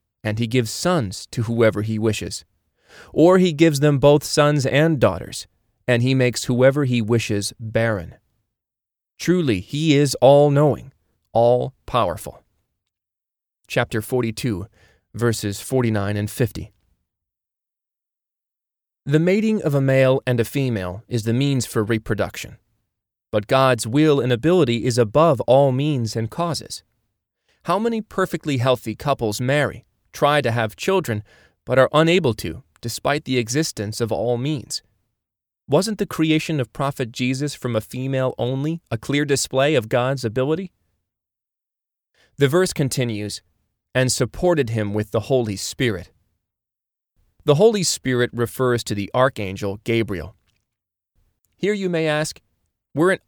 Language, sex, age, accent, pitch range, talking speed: English, male, 30-49, American, 110-145 Hz, 130 wpm